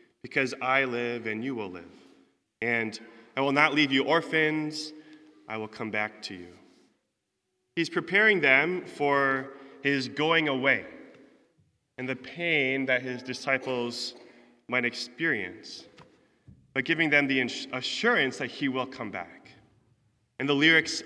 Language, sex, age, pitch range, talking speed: English, male, 20-39, 115-145 Hz, 135 wpm